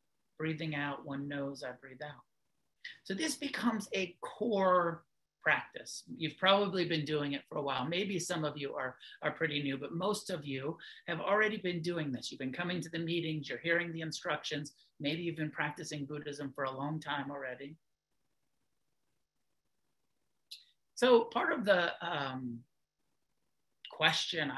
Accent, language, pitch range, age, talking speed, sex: American, English, 140-175 Hz, 50-69, 155 wpm, male